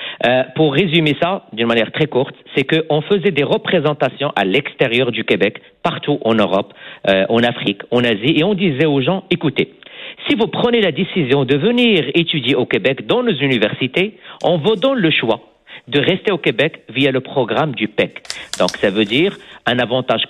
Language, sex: French, male